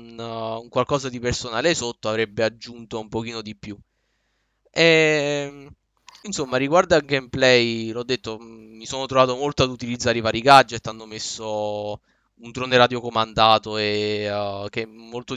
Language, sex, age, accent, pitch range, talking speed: Italian, male, 20-39, native, 110-130 Hz, 140 wpm